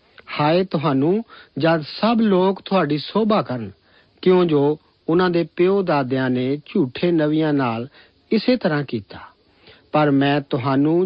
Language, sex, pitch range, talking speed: Punjabi, male, 140-190 Hz, 130 wpm